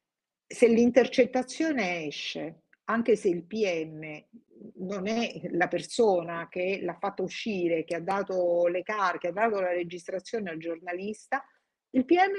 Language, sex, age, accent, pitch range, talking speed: Italian, female, 50-69, native, 180-240 Hz, 135 wpm